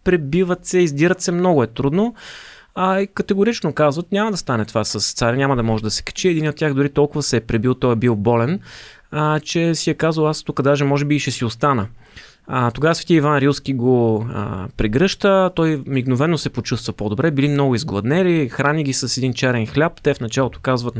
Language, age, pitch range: Bulgarian, 20-39, 120-155 Hz